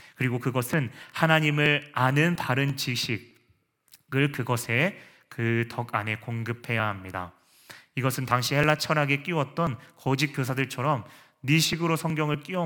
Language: Korean